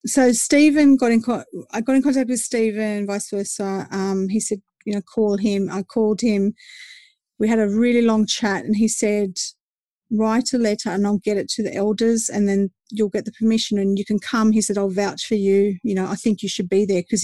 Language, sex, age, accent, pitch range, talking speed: English, female, 40-59, Australian, 200-235 Hz, 235 wpm